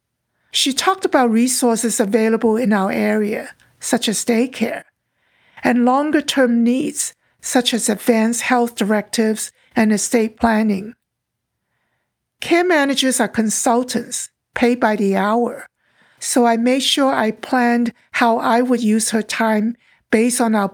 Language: English